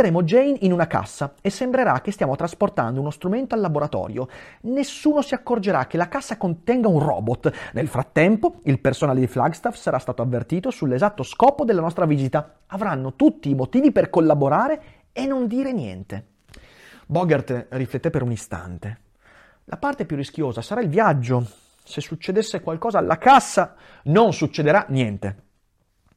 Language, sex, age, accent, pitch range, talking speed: Italian, male, 30-49, native, 130-200 Hz, 155 wpm